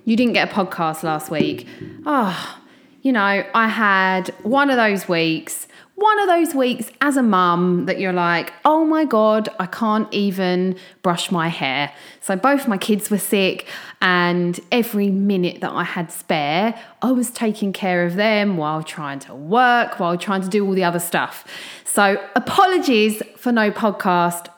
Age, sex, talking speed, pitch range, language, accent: 30-49, female, 175 wpm, 175-235 Hz, English, British